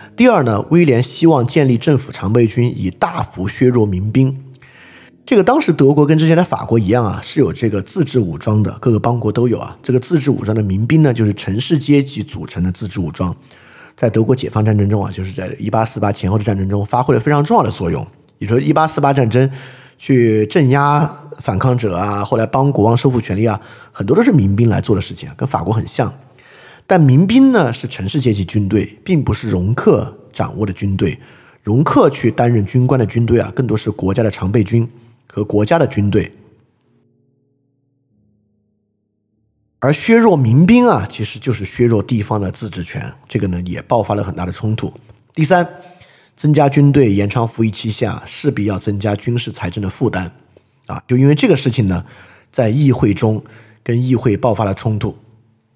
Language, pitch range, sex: Chinese, 105-135 Hz, male